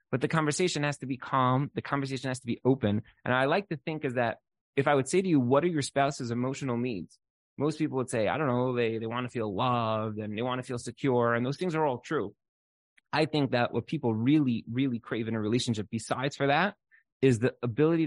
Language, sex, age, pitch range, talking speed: English, male, 20-39, 120-155 Hz, 245 wpm